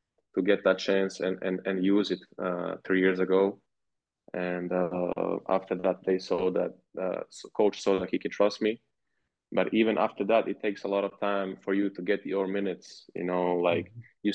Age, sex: 20-39, male